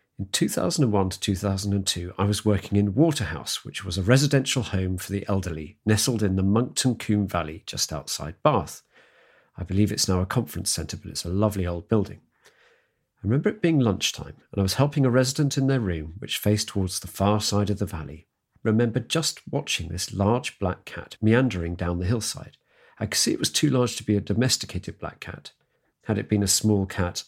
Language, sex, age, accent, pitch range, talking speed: English, male, 50-69, British, 90-120 Hz, 205 wpm